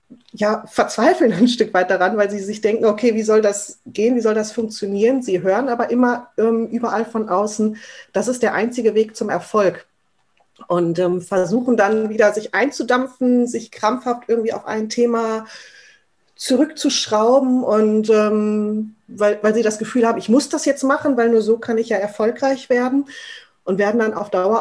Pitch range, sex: 200-245 Hz, female